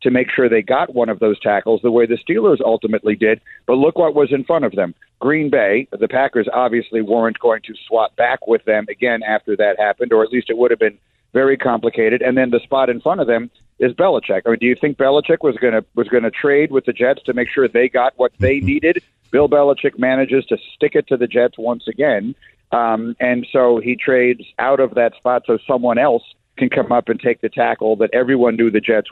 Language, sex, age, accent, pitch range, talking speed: English, male, 50-69, American, 115-140 Hz, 230 wpm